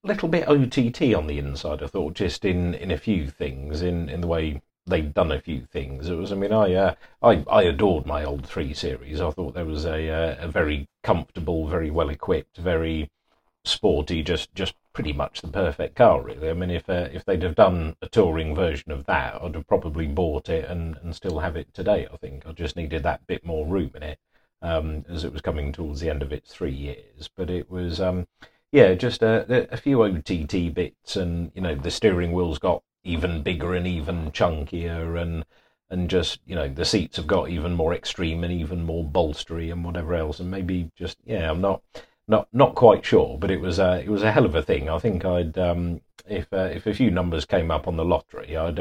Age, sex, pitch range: 40-59, male, 80-90 Hz